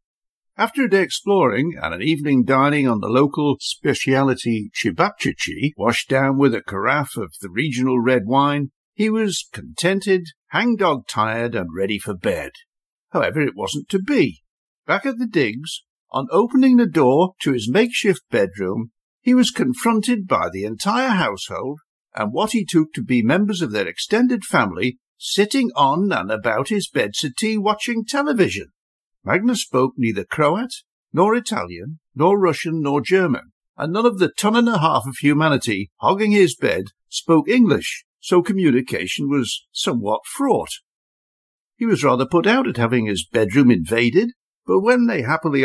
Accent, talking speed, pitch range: British, 155 wpm, 125-215 Hz